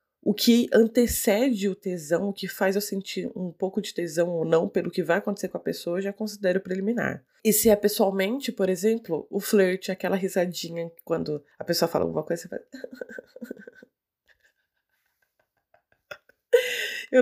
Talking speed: 165 wpm